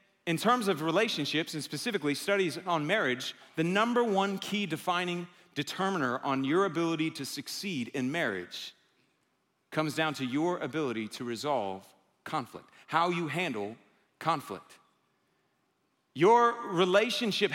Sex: male